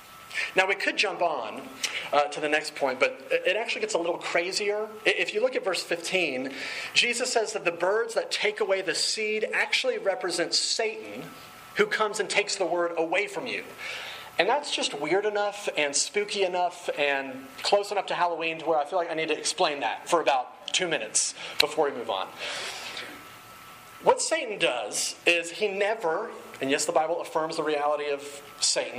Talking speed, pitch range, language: 190 wpm, 155-220 Hz, English